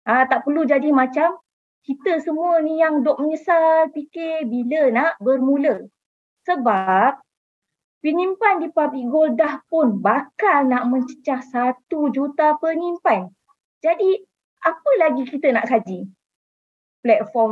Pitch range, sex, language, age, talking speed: 235-325 Hz, female, Malay, 20-39, 120 wpm